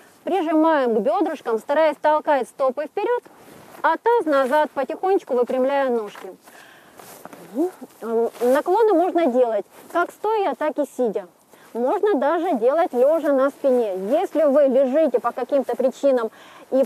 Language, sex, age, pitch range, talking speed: Ukrainian, female, 30-49, 255-340 Hz, 120 wpm